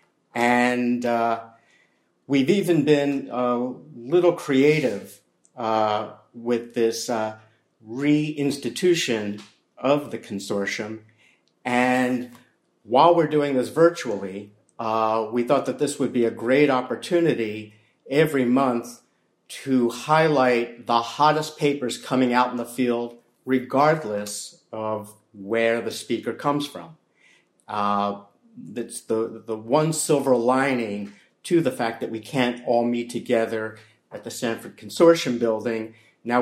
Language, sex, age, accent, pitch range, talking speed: English, male, 50-69, American, 115-135 Hz, 120 wpm